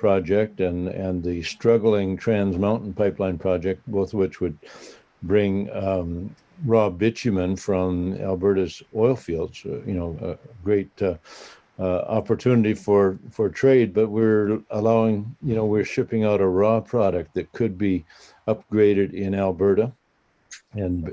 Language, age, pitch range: English, 60-79, 95-110 Hz